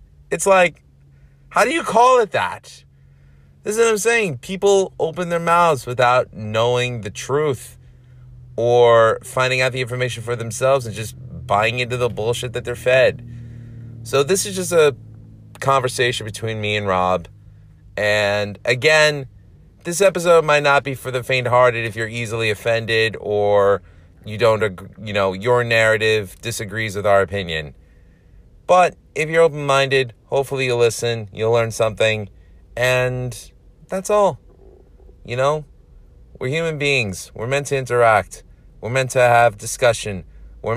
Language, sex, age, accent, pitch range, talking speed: English, male, 30-49, American, 100-125 Hz, 150 wpm